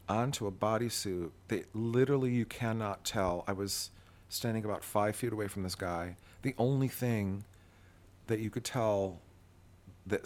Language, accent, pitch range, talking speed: English, American, 90-110 Hz, 150 wpm